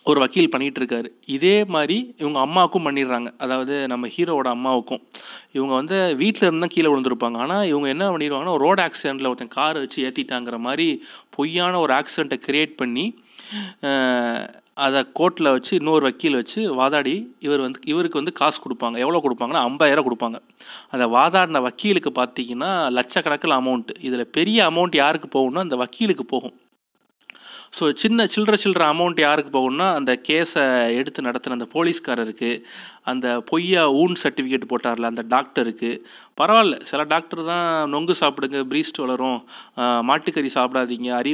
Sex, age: male, 30-49